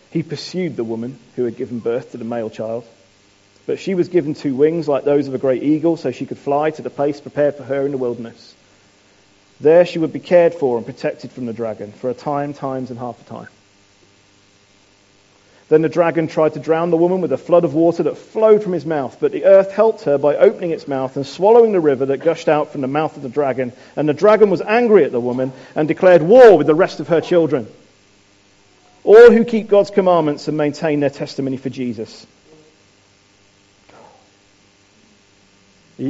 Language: English